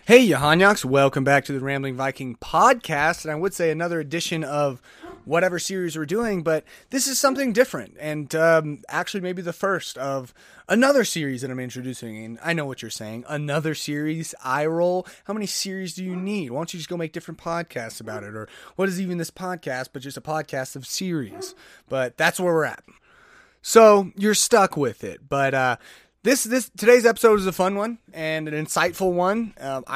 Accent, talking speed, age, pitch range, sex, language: American, 200 wpm, 30-49, 135-185 Hz, male, English